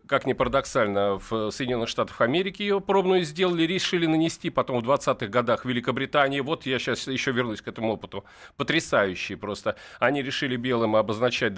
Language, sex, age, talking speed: Russian, male, 40-59, 160 wpm